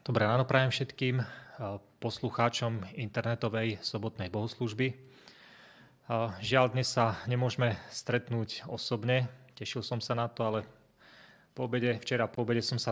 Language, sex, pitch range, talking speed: Slovak, male, 110-120 Hz, 125 wpm